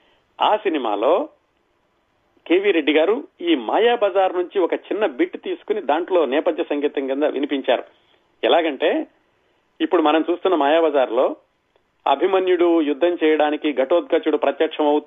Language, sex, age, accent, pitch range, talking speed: Telugu, male, 40-59, native, 140-230 Hz, 110 wpm